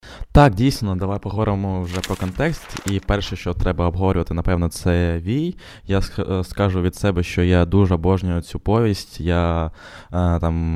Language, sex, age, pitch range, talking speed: Ukrainian, male, 20-39, 90-105 Hz, 155 wpm